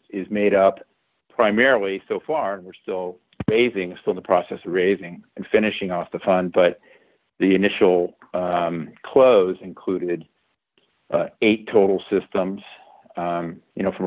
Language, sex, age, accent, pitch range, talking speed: English, male, 50-69, American, 90-100 Hz, 150 wpm